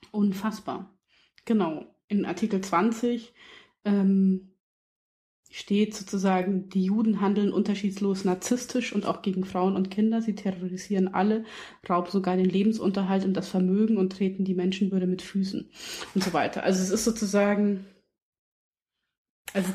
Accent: German